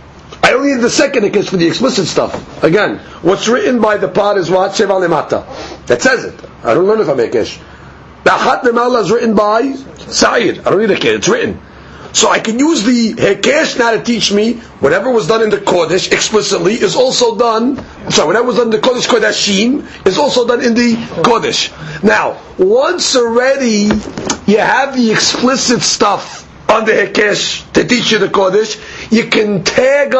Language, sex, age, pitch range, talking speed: English, male, 50-69, 215-260 Hz, 185 wpm